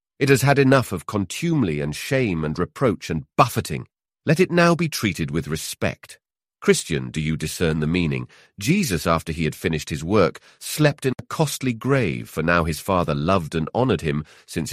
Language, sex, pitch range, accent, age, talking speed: English, male, 85-125 Hz, British, 40-59, 185 wpm